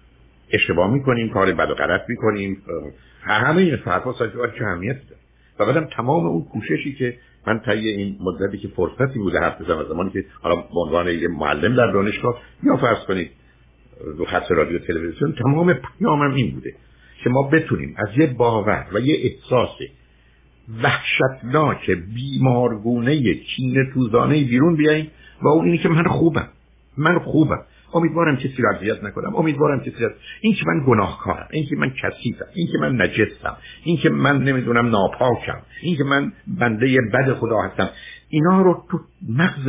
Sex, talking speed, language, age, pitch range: male, 155 wpm, Persian, 60-79, 100-145 Hz